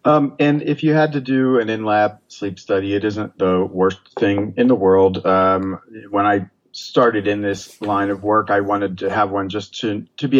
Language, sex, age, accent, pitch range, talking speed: English, male, 40-59, American, 95-120 Hz, 215 wpm